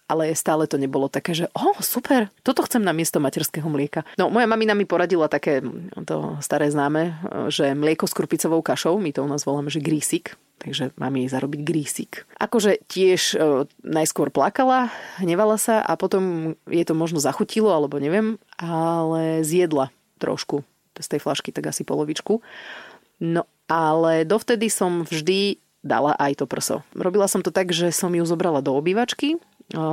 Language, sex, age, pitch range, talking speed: Slovak, female, 30-49, 150-195 Hz, 170 wpm